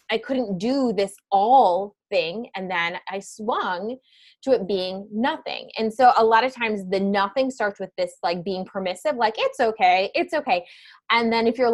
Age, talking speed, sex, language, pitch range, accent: 20-39, 190 wpm, female, English, 180-235 Hz, American